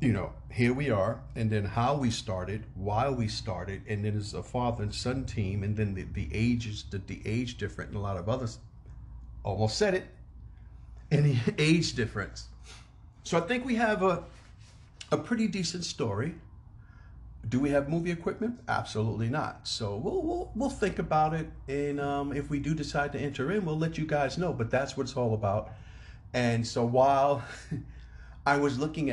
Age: 50-69